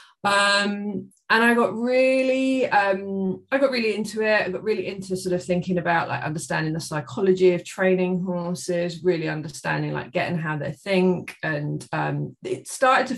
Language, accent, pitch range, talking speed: English, British, 170-210 Hz, 175 wpm